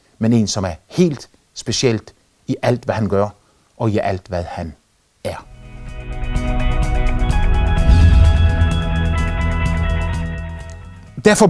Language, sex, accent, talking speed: Danish, male, native, 95 wpm